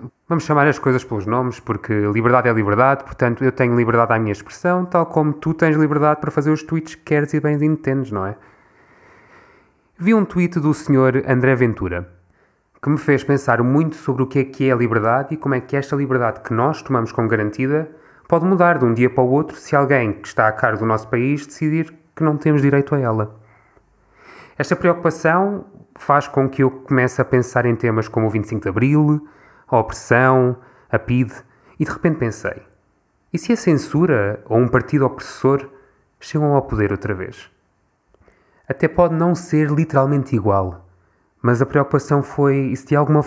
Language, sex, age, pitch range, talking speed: Portuguese, male, 20-39, 120-150 Hz, 195 wpm